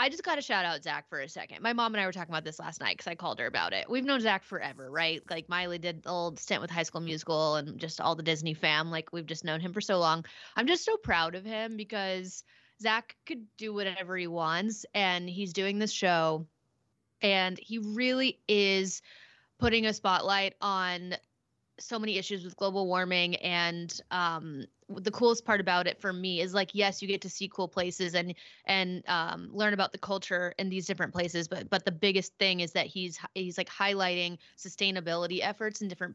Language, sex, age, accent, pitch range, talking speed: English, female, 20-39, American, 175-205 Hz, 215 wpm